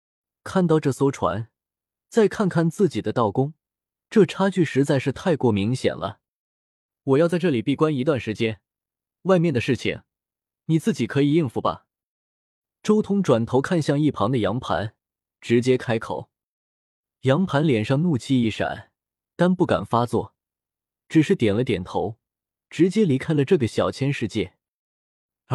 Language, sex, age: Chinese, male, 20-39